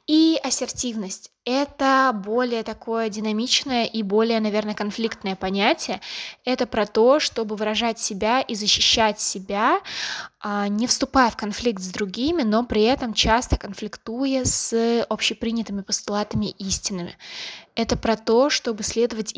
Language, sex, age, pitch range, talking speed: English, female, 20-39, 195-240 Hz, 125 wpm